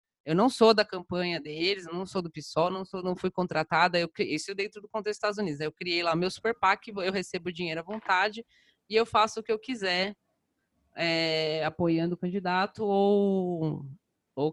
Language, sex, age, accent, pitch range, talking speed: Portuguese, female, 20-39, Brazilian, 165-215 Hz, 195 wpm